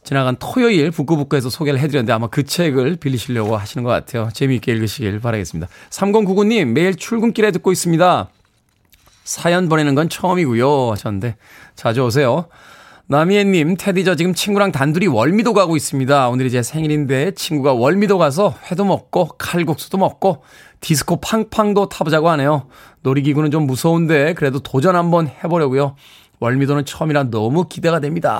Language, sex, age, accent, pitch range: Korean, male, 20-39, native, 135-185 Hz